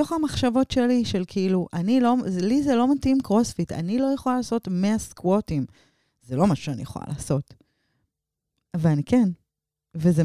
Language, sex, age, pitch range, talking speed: Hebrew, female, 30-49, 155-225 Hz, 150 wpm